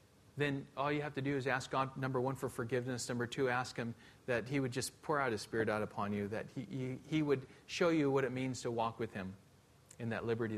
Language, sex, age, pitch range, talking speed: English, male, 40-59, 115-135 Hz, 250 wpm